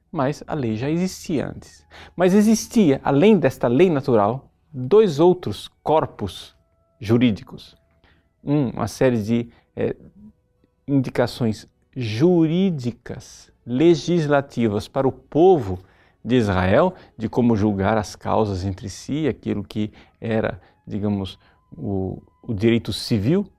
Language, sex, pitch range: Portuguese, male, 105-155 Hz